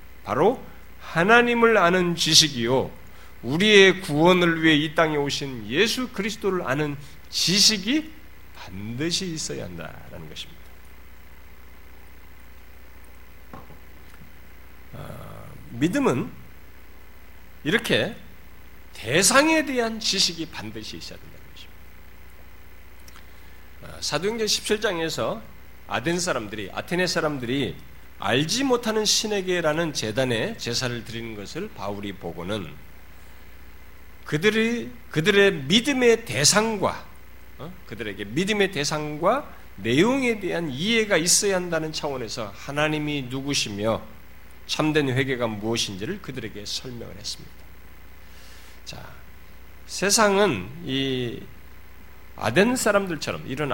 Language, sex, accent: Korean, male, native